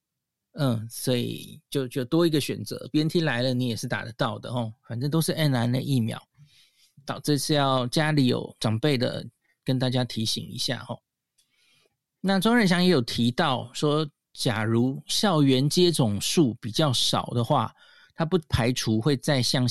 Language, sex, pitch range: Chinese, male, 120-150 Hz